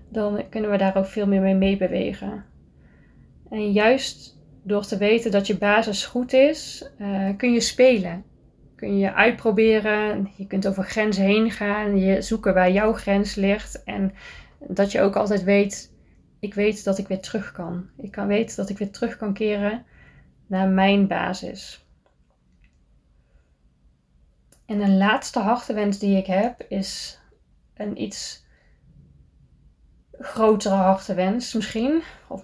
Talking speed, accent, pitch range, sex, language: 145 wpm, Dutch, 190-215 Hz, female, Dutch